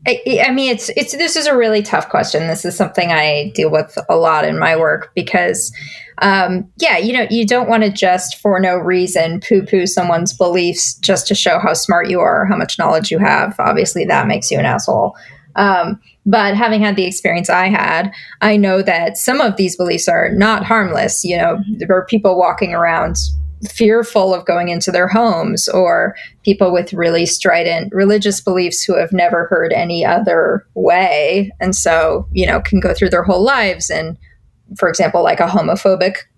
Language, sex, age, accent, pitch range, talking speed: English, female, 20-39, American, 180-225 Hz, 195 wpm